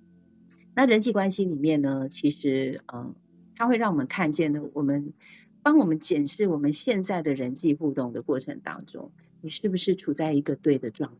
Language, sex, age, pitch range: Chinese, female, 40-59, 150-190 Hz